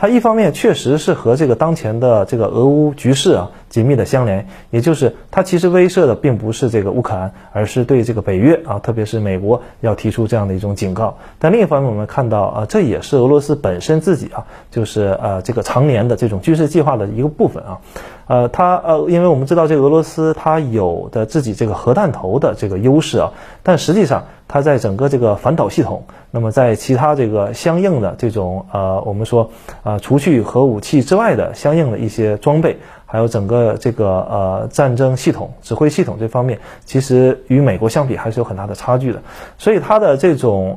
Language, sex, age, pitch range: Chinese, male, 30-49, 110-155 Hz